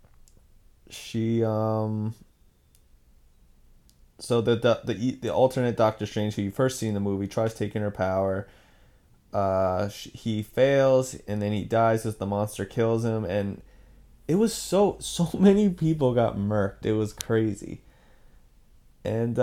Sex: male